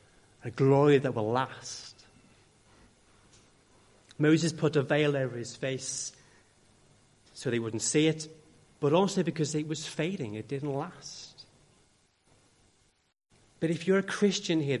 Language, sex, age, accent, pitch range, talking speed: English, male, 30-49, British, 130-165 Hz, 130 wpm